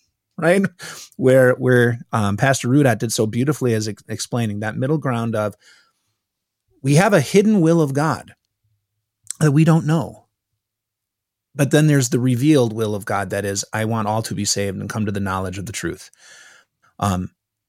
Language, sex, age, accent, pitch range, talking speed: English, male, 30-49, American, 105-145 Hz, 175 wpm